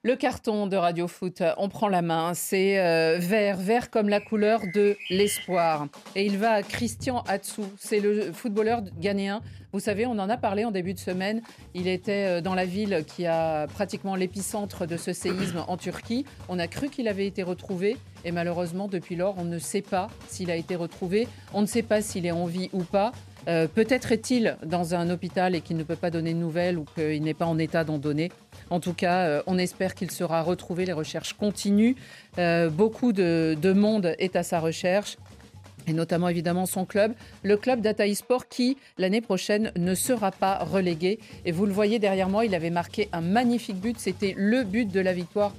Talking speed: 205 wpm